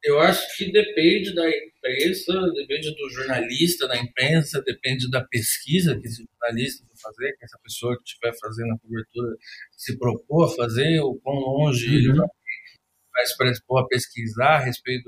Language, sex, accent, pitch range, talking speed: Portuguese, male, Brazilian, 125-165 Hz, 160 wpm